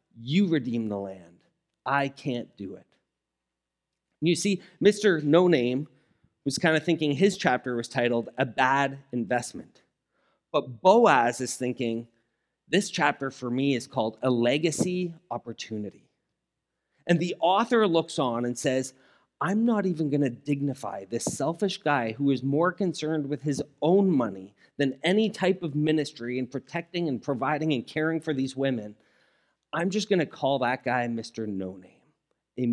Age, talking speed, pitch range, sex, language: 30-49, 155 wpm, 125-175 Hz, male, English